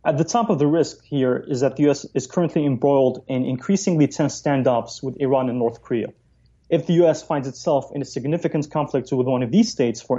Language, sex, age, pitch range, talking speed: English, male, 30-49, 130-155 Hz, 225 wpm